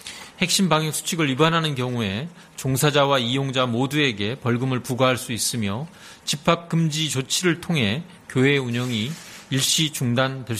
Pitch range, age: 120-155 Hz, 40-59